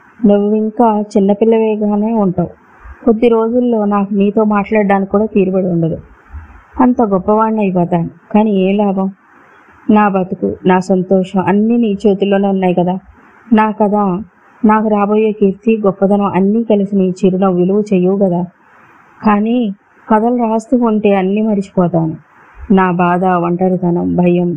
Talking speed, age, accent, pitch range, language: 125 wpm, 20-39, native, 180-215 Hz, Telugu